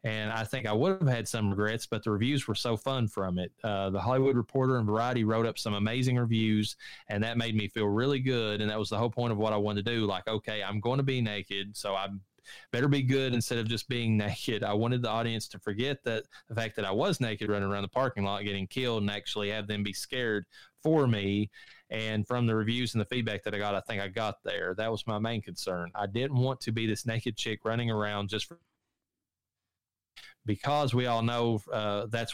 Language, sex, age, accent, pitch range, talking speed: English, male, 20-39, American, 105-120 Hz, 240 wpm